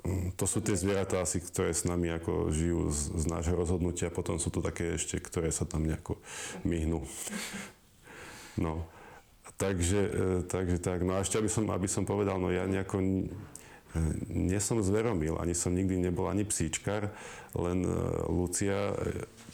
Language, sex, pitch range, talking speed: Slovak, male, 90-105 Hz, 160 wpm